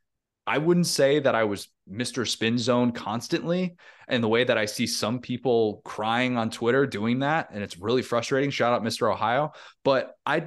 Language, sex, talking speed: English, male, 190 wpm